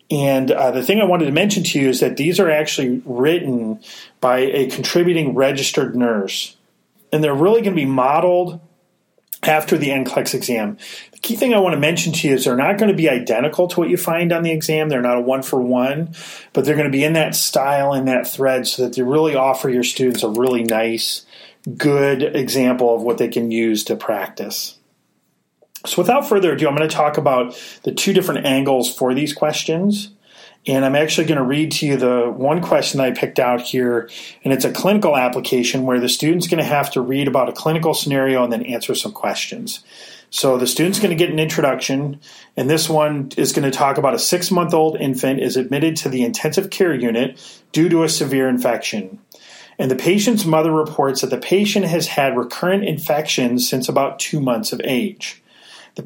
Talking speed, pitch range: 205 wpm, 125-160 Hz